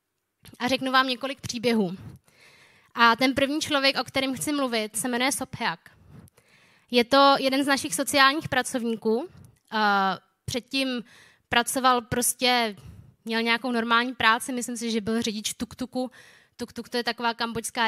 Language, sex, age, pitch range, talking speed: Czech, female, 20-39, 225-265 Hz, 140 wpm